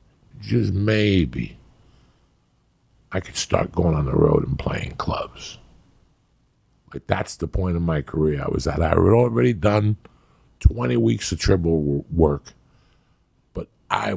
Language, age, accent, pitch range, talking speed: English, 50-69, American, 85-105 Hz, 140 wpm